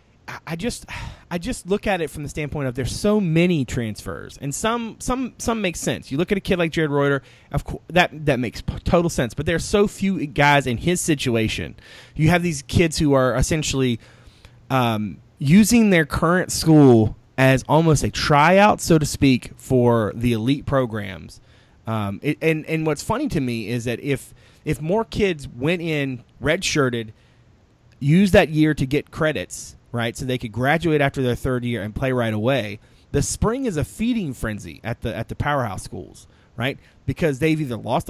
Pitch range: 120-165 Hz